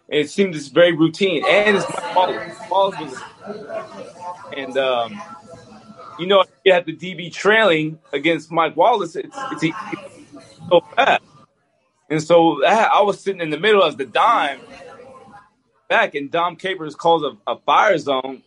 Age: 20-39